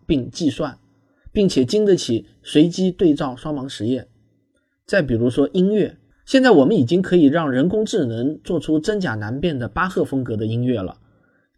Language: Chinese